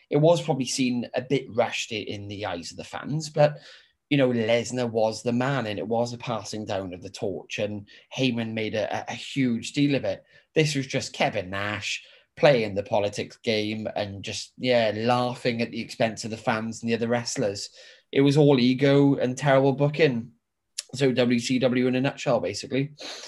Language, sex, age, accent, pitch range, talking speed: English, male, 20-39, British, 120-160 Hz, 190 wpm